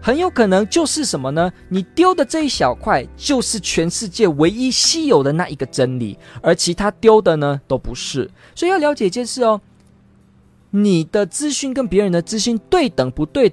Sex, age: male, 20-39